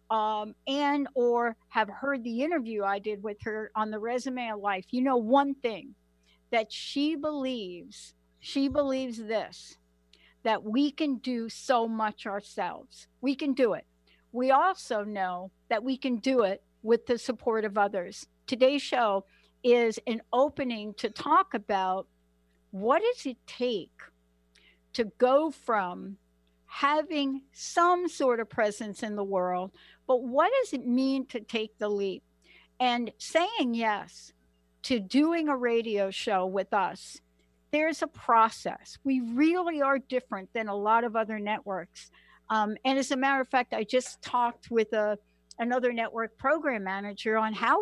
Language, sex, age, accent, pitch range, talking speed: English, female, 60-79, American, 205-265 Hz, 155 wpm